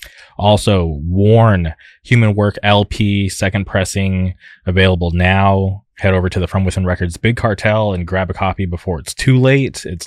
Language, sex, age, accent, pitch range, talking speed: English, male, 20-39, American, 95-105 Hz, 160 wpm